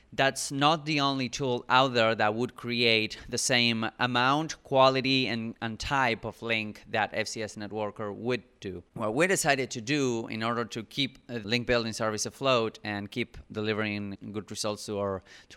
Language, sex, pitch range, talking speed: English, male, 110-130 Hz, 175 wpm